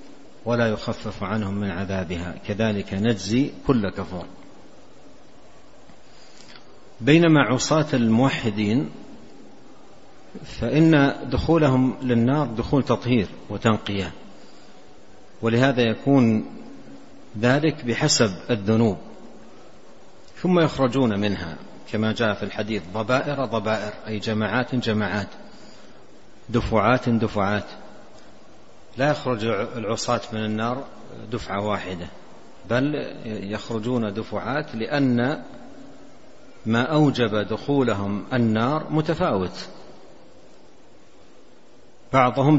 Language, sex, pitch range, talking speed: Arabic, male, 105-130 Hz, 75 wpm